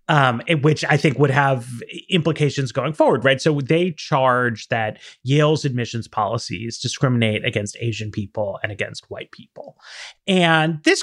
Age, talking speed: 30-49, 145 wpm